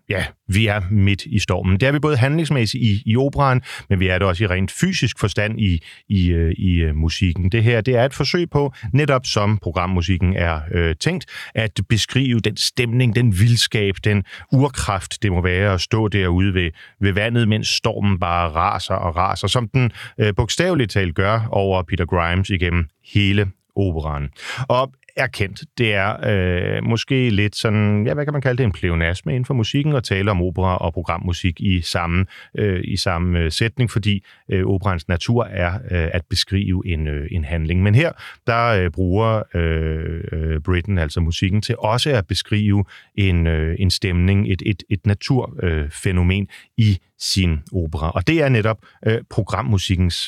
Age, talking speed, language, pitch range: 30-49, 175 wpm, Danish, 90-115 Hz